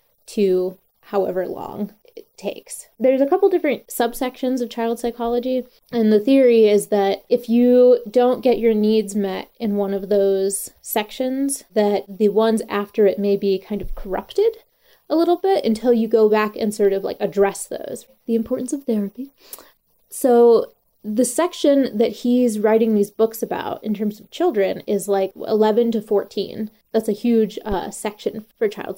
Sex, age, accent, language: female, 20-39, American, English